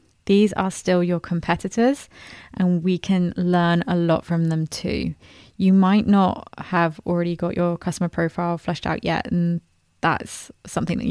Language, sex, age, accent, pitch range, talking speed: English, female, 20-39, British, 170-195 Hz, 160 wpm